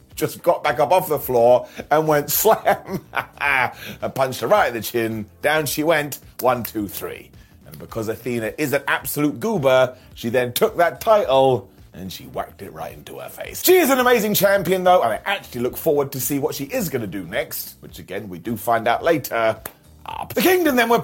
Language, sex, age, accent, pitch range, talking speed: English, male, 30-49, British, 125-195 Hz, 210 wpm